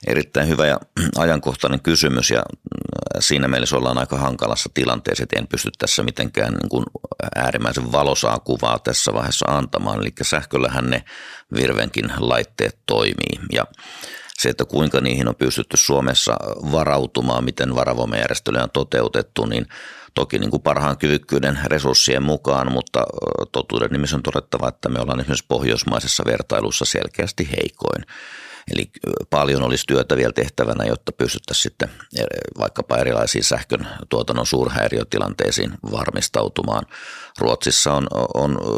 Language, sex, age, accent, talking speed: Finnish, male, 50-69, native, 125 wpm